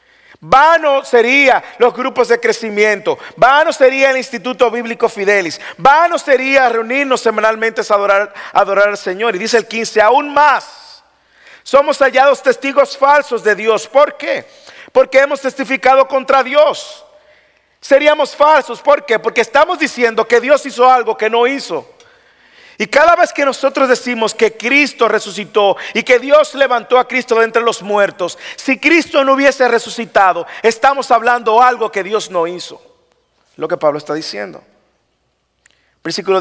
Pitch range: 210-270 Hz